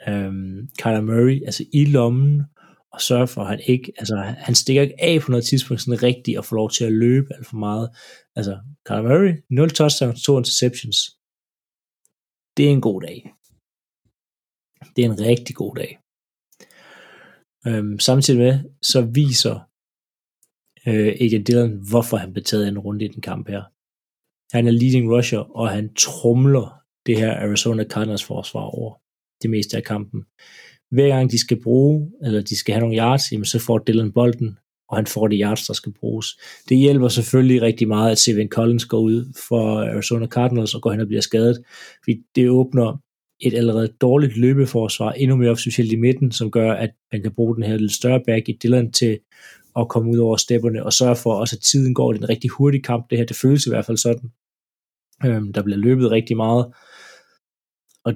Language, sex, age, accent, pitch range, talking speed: Danish, male, 30-49, native, 110-125 Hz, 190 wpm